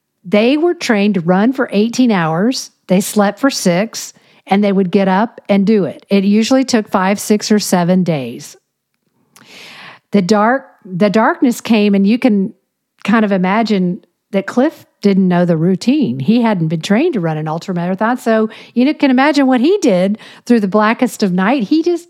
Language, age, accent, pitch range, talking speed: English, 50-69, American, 175-230 Hz, 180 wpm